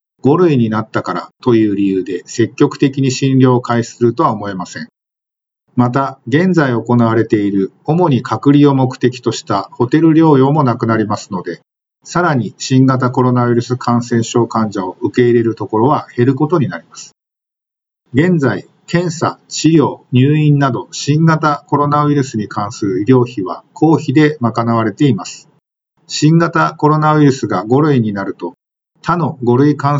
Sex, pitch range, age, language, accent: male, 115-150 Hz, 50-69, Japanese, native